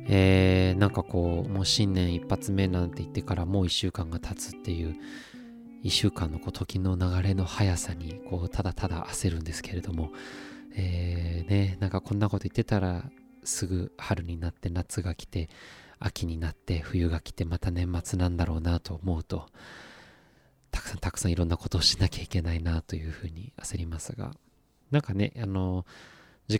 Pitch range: 85-100 Hz